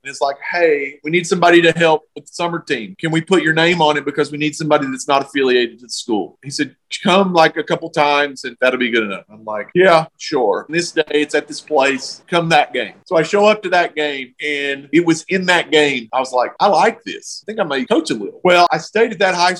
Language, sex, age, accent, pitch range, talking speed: English, male, 40-59, American, 140-170 Hz, 265 wpm